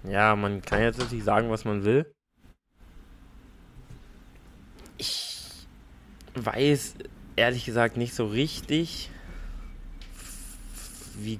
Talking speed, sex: 90 wpm, male